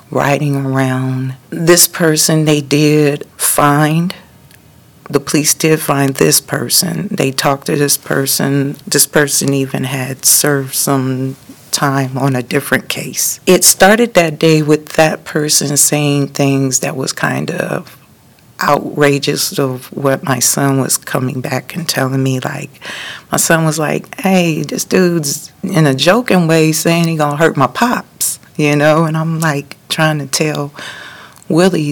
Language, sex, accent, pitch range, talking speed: English, female, American, 140-165 Hz, 150 wpm